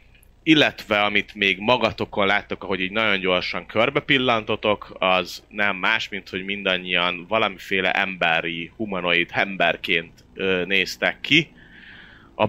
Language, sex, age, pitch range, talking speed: Hungarian, male, 30-49, 95-110 Hz, 110 wpm